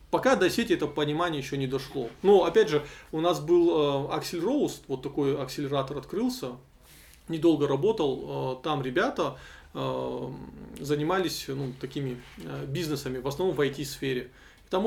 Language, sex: Russian, male